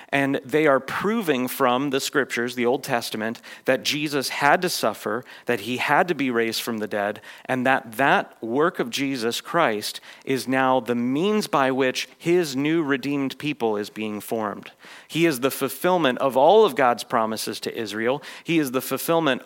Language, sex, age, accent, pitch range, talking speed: English, male, 40-59, American, 120-145 Hz, 180 wpm